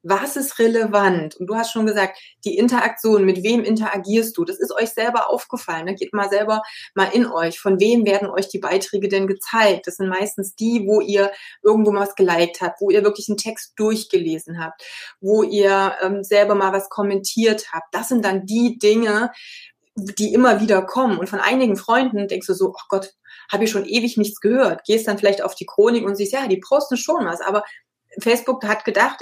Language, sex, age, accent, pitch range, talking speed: German, female, 20-39, German, 195-235 Hz, 205 wpm